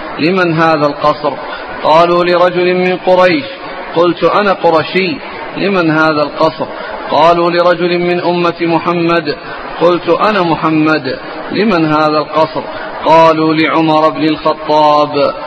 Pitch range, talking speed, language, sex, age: 150-170 Hz, 110 wpm, Arabic, male, 40-59